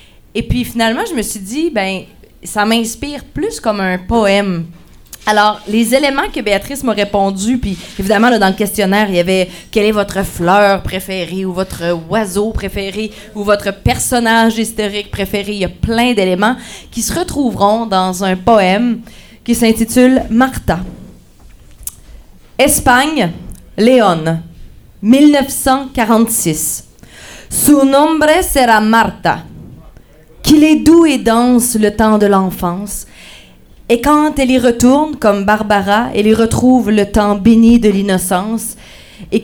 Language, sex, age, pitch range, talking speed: French, female, 30-49, 200-245 Hz, 150 wpm